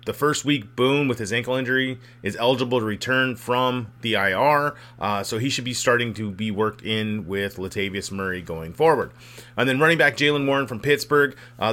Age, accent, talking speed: 30-49, American, 200 wpm